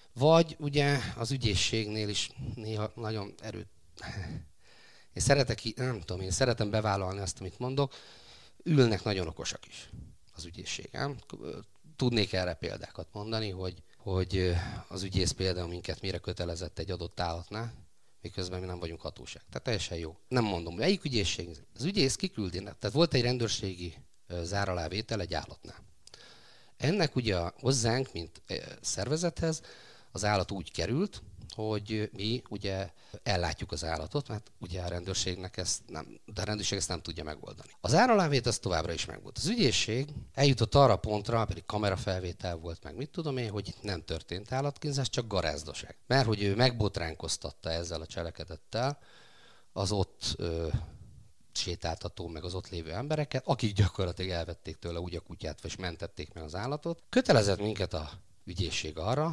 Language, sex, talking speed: Hungarian, male, 145 wpm